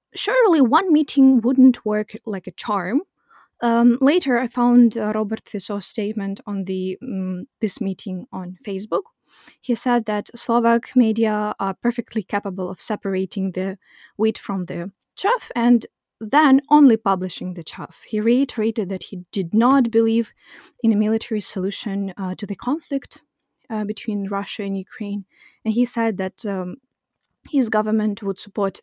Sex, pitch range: female, 205-260 Hz